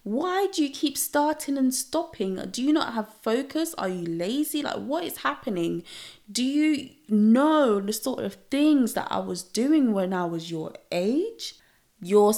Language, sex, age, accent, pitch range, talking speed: English, female, 20-39, British, 195-280 Hz, 175 wpm